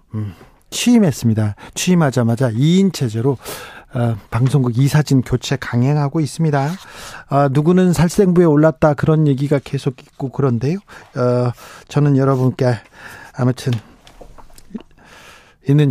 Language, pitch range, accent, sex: Korean, 130-175 Hz, native, male